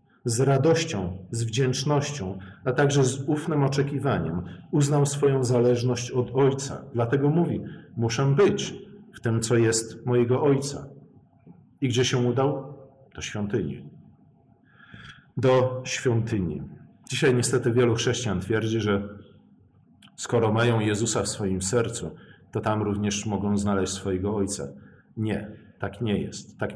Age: 40-59